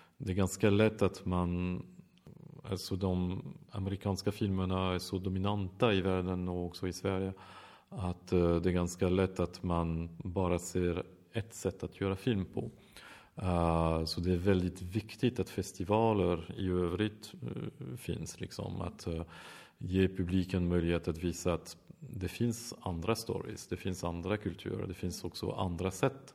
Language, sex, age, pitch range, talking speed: Swedish, male, 40-59, 90-105 Hz, 145 wpm